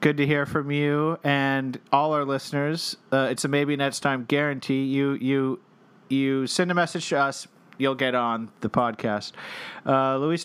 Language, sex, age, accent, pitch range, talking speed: English, male, 40-59, American, 130-160 Hz, 180 wpm